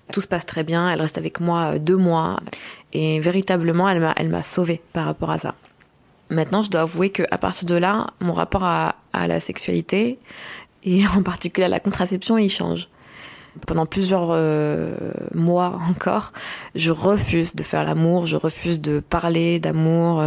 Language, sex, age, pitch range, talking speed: French, female, 20-39, 160-185 Hz, 175 wpm